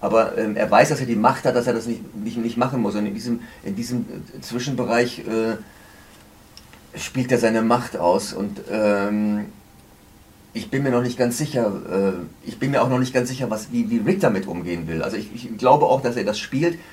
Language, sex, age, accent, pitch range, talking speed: German, male, 40-59, German, 95-120 Hz, 225 wpm